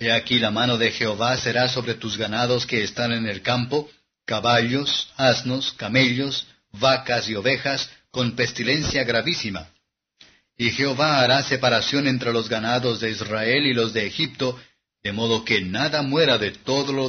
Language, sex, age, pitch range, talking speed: Spanish, male, 50-69, 115-135 Hz, 160 wpm